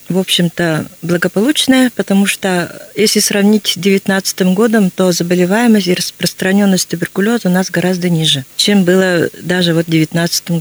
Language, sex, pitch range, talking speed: Russian, female, 170-200 Hz, 140 wpm